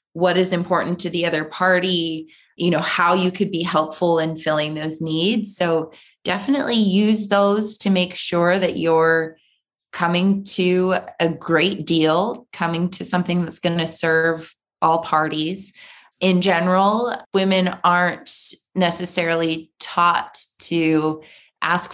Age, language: 20-39, English